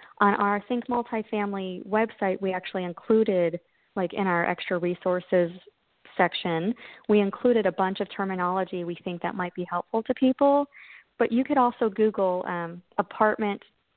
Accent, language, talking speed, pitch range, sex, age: American, English, 150 wpm, 170-210 Hz, female, 30-49